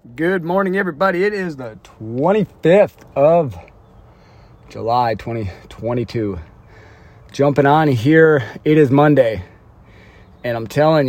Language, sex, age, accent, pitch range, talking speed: English, male, 40-59, American, 100-135 Hz, 105 wpm